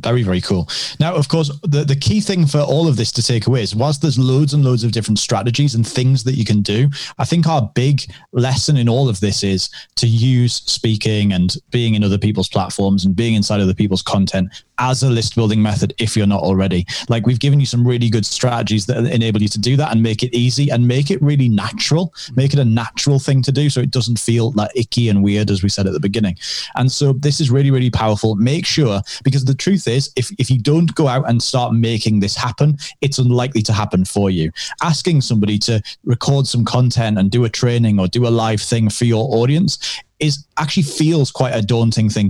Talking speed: 235 wpm